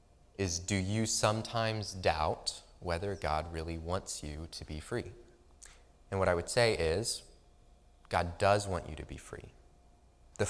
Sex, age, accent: male, 20-39, American